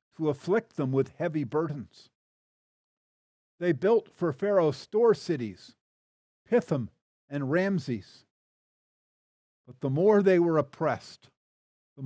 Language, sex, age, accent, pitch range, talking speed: English, male, 50-69, American, 130-190 Hz, 110 wpm